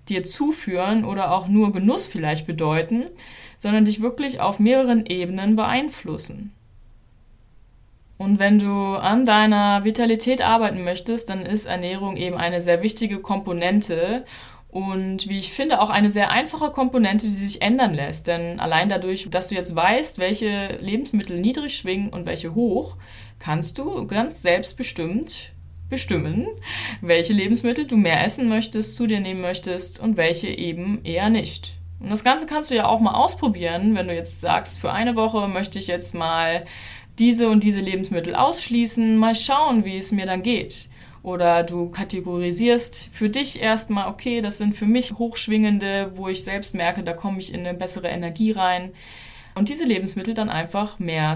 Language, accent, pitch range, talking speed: German, German, 175-225 Hz, 165 wpm